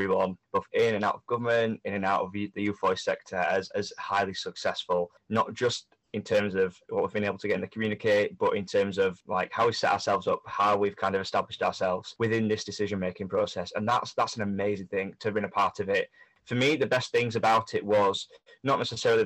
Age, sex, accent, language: 20-39, male, British, English